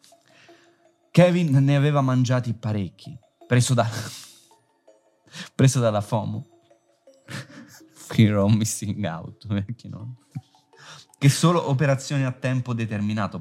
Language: Italian